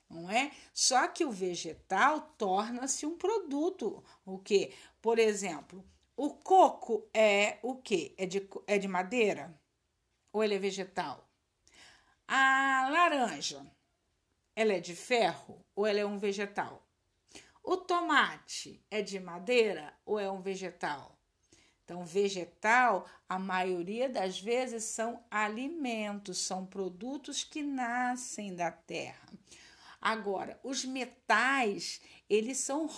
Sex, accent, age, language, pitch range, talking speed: female, Brazilian, 50-69, Portuguese, 195-270 Hz, 120 wpm